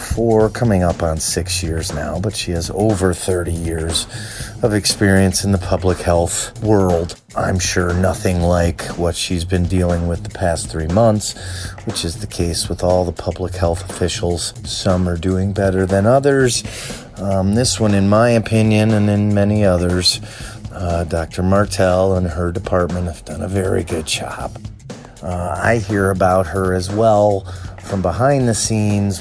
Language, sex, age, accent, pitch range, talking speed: English, male, 30-49, American, 90-110 Hz, 170 wpm